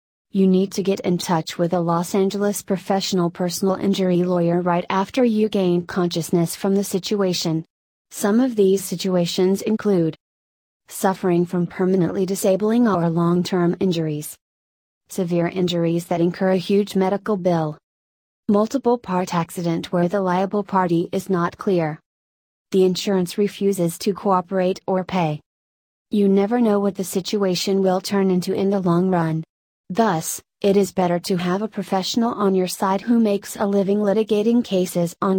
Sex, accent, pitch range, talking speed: female, American, 175-200 Hz, 155 wpm